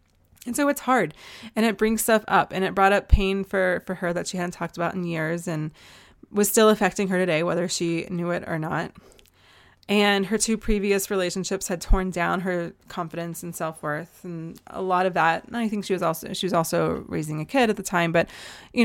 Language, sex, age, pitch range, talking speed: English, female, 20-39, 170-210 Hz, 225 wpm